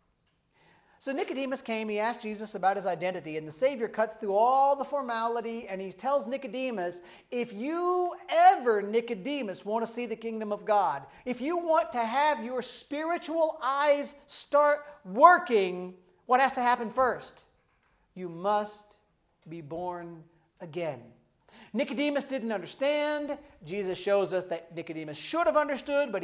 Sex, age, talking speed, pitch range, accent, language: male, 40-59, 145 wpm, 205-290 Hz, American, English